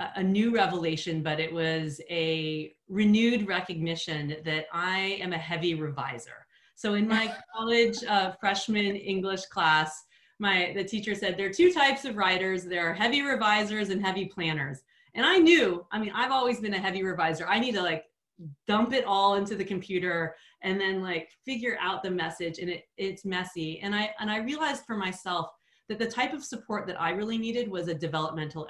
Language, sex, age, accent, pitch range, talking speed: English, female, 30-49, American, 165-215 Hz, 190 wpm